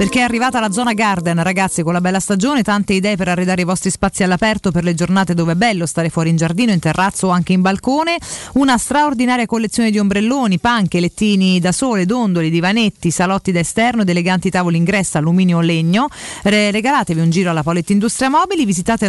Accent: native